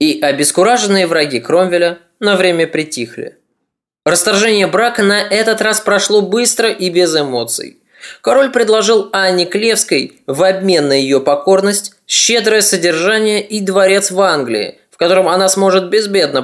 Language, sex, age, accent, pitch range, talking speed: Russian, male, 20-39, native, 170-215 Hz, 135 wpm